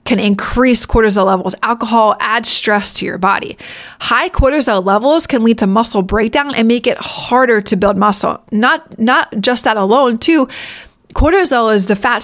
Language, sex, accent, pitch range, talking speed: English, female, American, 200-240 Hz, 170 wpm